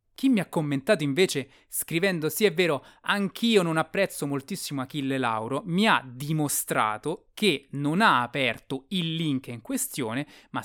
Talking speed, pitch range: 150 wpm, 135-195 Hz